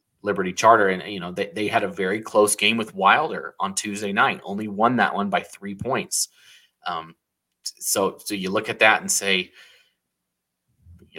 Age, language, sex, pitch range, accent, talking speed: 30-49, English, male, 100-120 Hz, American, 180 wpm